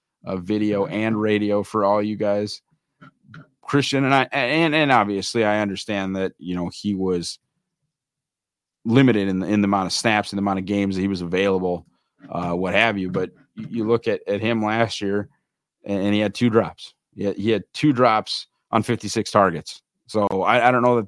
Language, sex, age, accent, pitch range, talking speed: English, male, 30-49, American, 95-125 Hz, 205 wpm